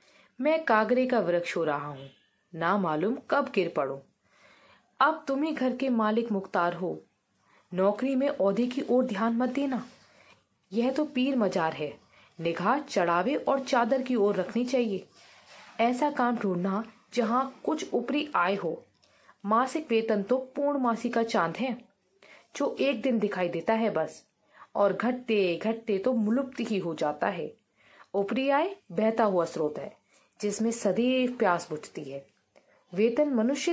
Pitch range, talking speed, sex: 190-265 Hz, 155 wpm, female